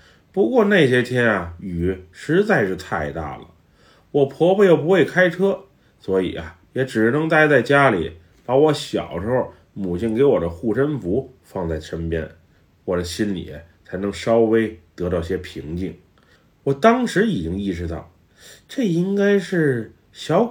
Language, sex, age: Chinese, male, 30-49